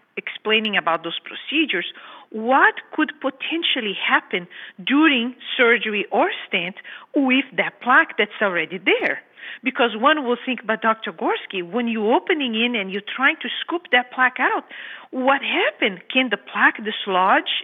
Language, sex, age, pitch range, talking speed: English, female, 50-69, 205-305 Hz, 145 wpm